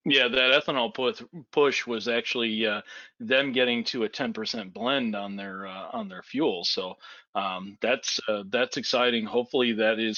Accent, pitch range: American, 115-150 Hz